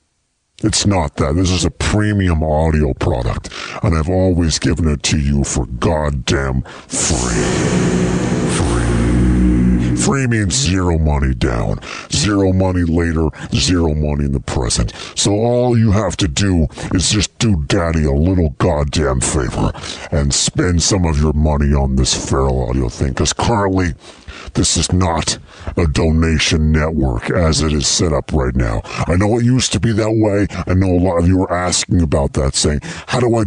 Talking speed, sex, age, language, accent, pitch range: 170 wpm, female, 50-69, English, American, 75-95 Hz